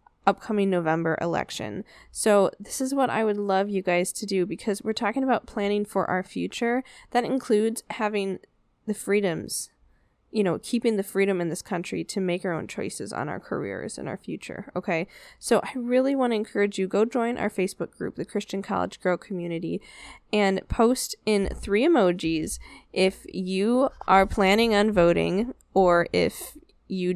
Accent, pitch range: American, 180-225 Hz